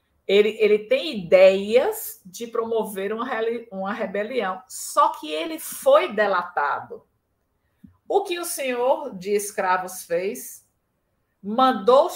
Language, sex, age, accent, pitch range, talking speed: Portuguese, female, 50-69, Brazilian, 185-260 Hz, 110 wpm